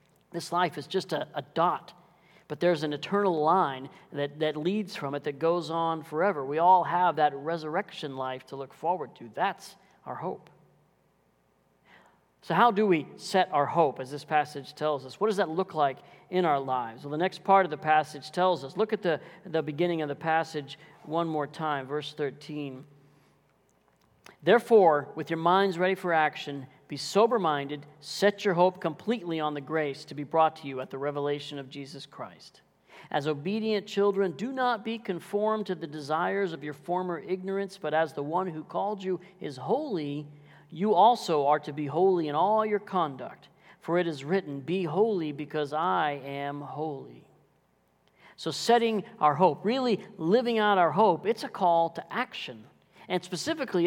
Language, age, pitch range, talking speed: English, 40-59, 150-190 Hz, 180 wpm